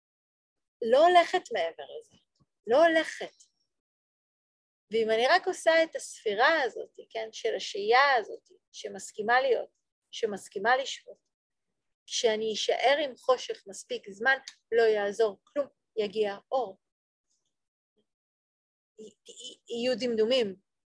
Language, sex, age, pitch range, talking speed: Hebrew, female, 40-59, 220-325 Hz, 95 wpm